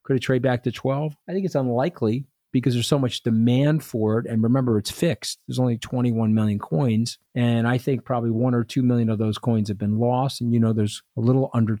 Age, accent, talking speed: 40-59, American, 240 wpm